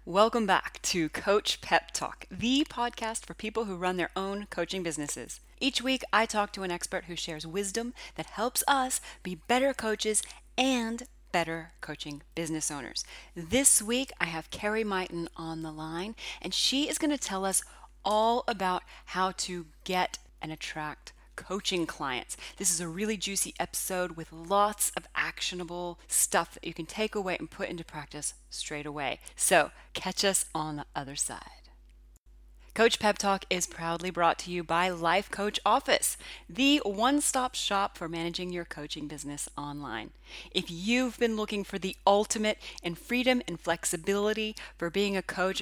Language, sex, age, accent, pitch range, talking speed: English, female, 30-49, American, 165-215 Hz, 165 wpm